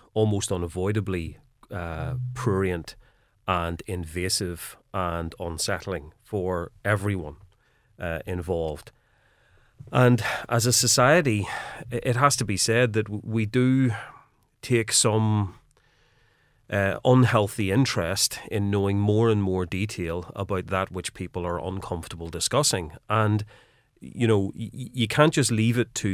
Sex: male